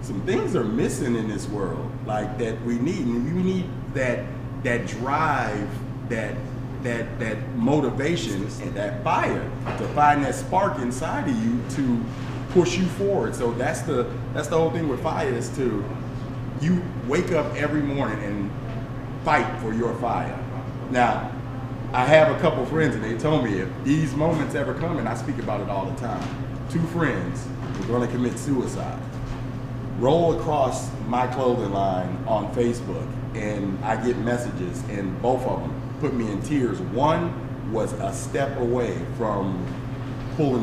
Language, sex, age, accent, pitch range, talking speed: English, male, 30-49, American, 120-130 Hz, 165 wpm